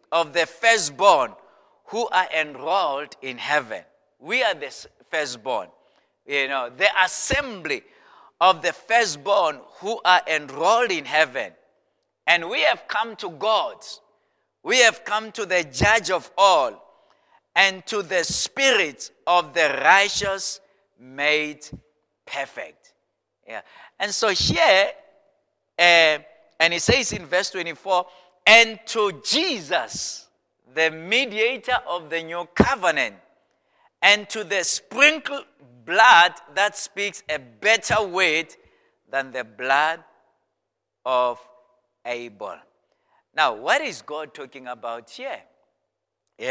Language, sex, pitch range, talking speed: English, male, 150-220 Hz, 115 wpm